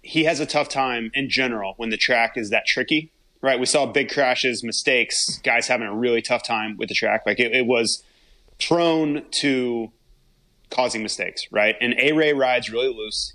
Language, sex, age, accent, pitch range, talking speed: English, male, 20-39, American, 115-145 Hz, 195 wpm